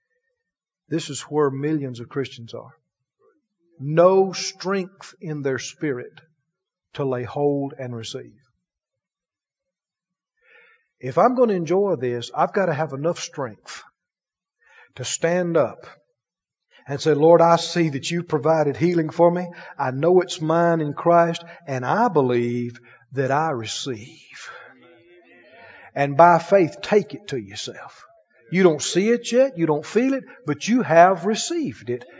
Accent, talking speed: American, 145 wpm